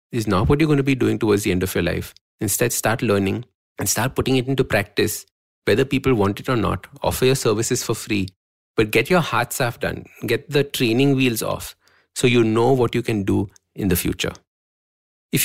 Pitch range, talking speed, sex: 105-155 Hz, 220 wpm, male